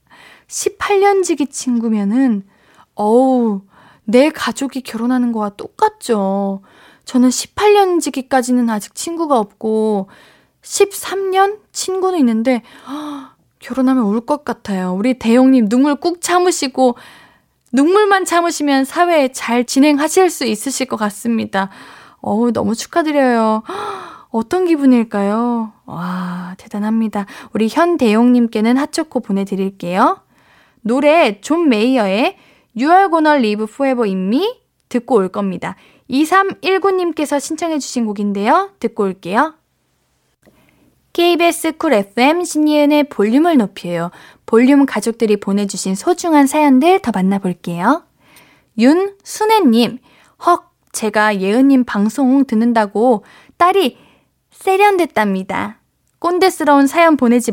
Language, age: Korean, 20-39